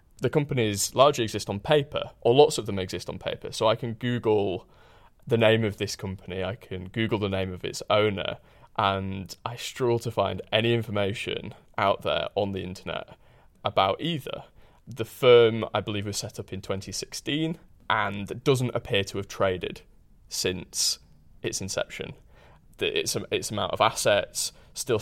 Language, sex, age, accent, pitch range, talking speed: English, male, 20-39, British, 100-130 Hz, 165 wpm